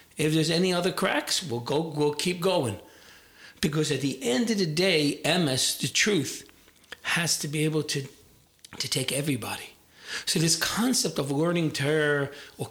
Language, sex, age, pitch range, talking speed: English, male, 40-59, 140-180 Hz, 170 wpm